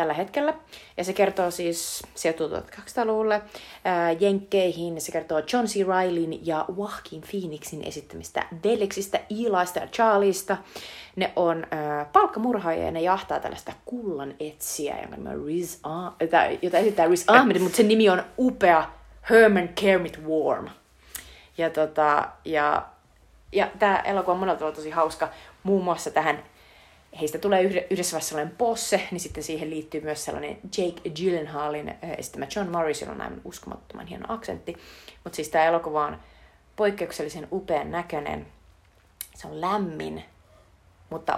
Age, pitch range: 30-49, 155-195 Hz